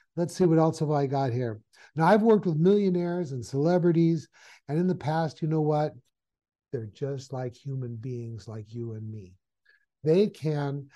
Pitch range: 135-165 Hz